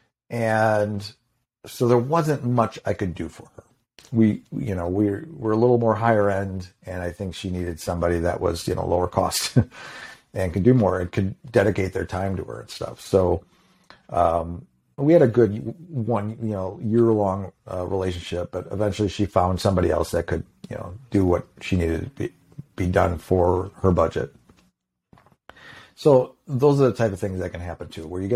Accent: American